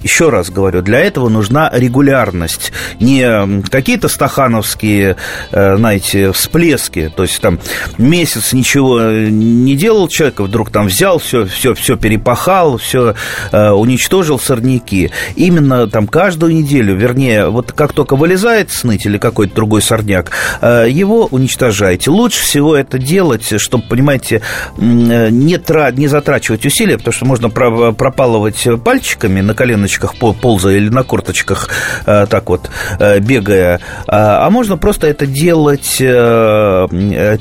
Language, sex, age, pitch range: Russian, male, 30-49, 105-140 Hz